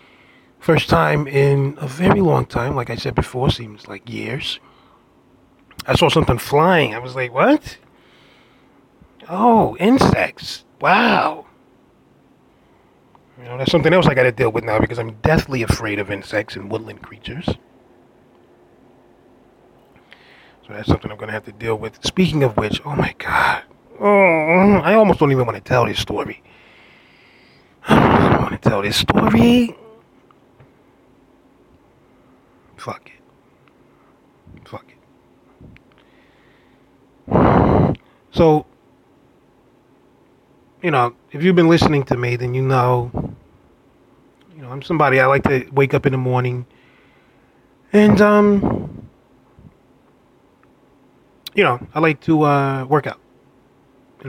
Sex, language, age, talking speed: male, English, 30-49, 125 wpm